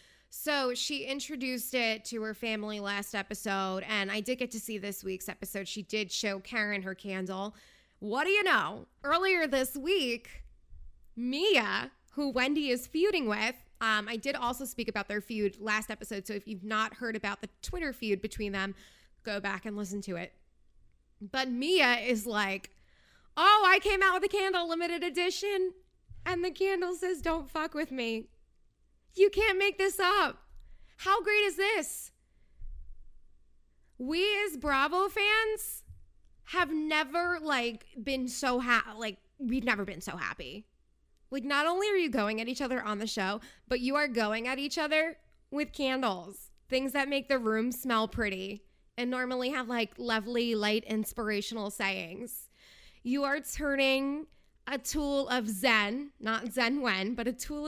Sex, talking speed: female, 165 wpm